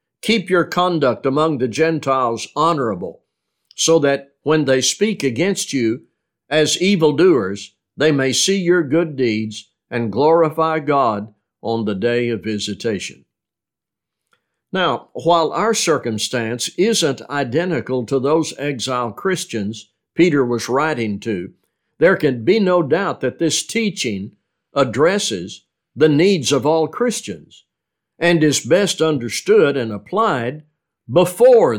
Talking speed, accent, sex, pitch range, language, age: 125 wpm, American, male, 115-170 Hz, English, 60-79